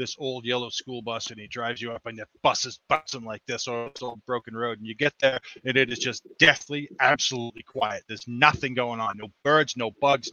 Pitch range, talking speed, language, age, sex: 115-150 Hz, 225 wpm, English, 30-49, male